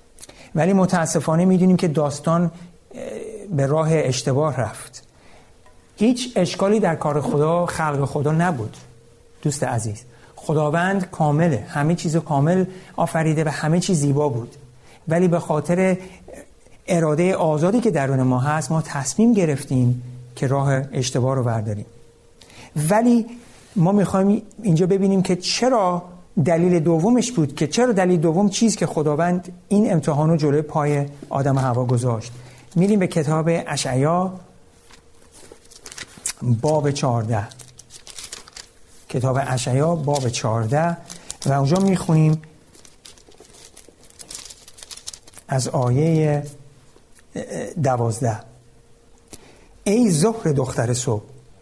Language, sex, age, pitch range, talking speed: Persian, male, 60-79, 125-175 Hz, 105 wpm